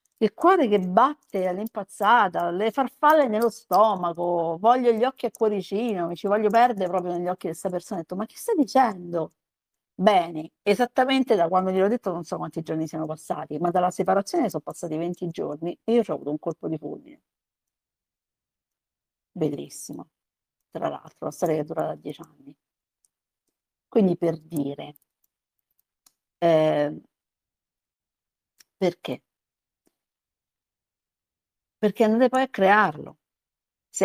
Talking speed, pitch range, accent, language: 145 wpm, 150-200 Hz, native, Italian